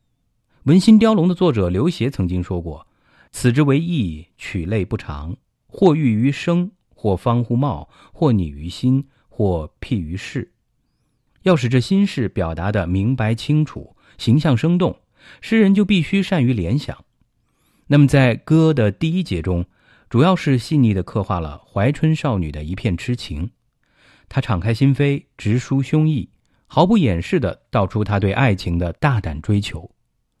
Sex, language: male, English